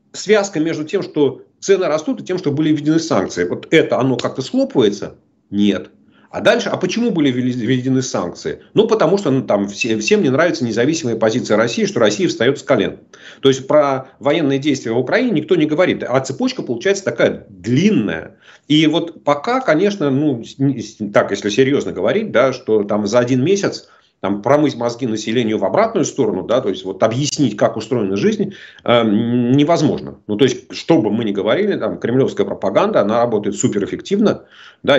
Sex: male